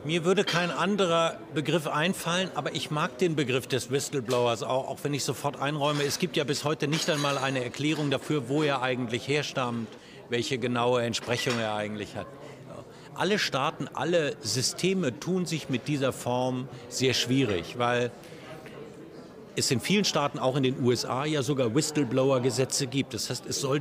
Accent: German